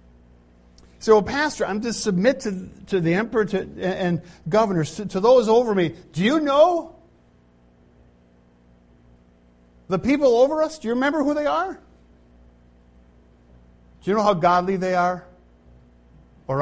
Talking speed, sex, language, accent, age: 125 wpm, male, English, American, 50-69